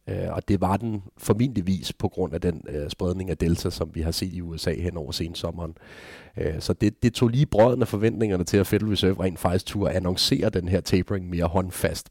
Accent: native